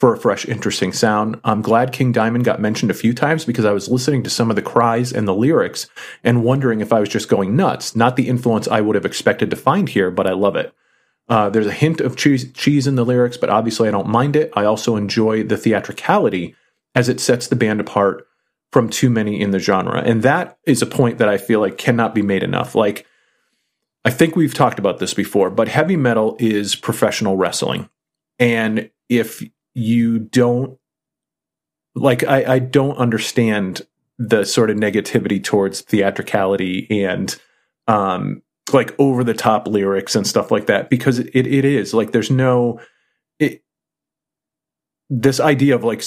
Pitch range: 105-125 Hz